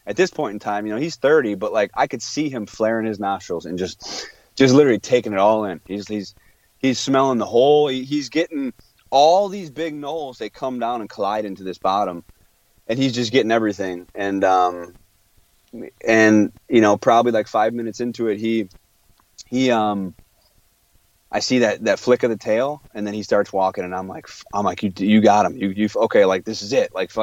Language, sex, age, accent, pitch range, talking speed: English, male, 30-49, American, 100-135 Hz, 210 wpm